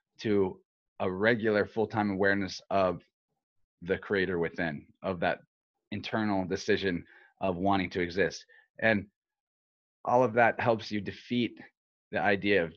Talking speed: 125 wpm